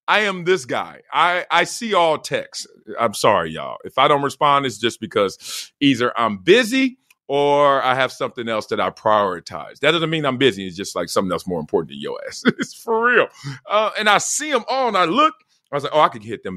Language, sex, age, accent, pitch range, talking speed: English, male, 40-59, American, 140-225 Hz, 235 wpm